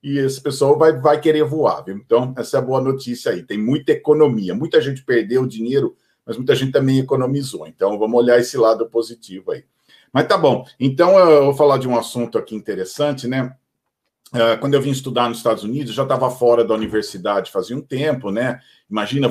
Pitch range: 115-150 Hz